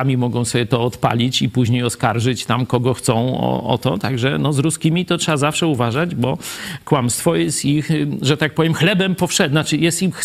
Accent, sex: native, male